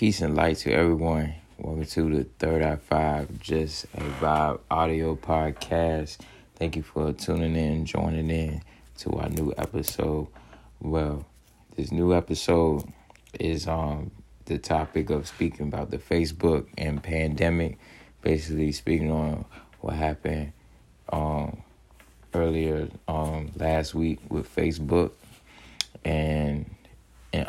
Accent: American